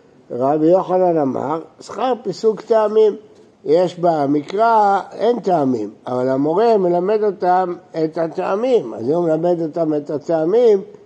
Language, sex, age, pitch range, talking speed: Hebrew, male, 60-79, 155-220 Hz, 125 wpm